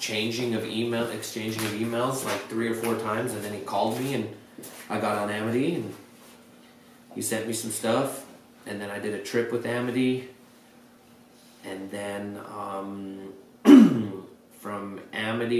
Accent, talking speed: American, 155 wpm